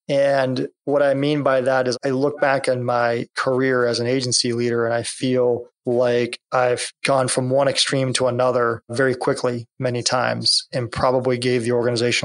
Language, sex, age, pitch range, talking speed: English, male, 30-49, 120-135 Hz, 180 wpm